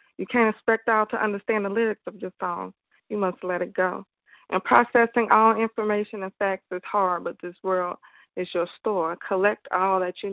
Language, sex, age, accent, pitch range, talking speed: English, female, 20-39, American, 185-210 Hz, 200 wpm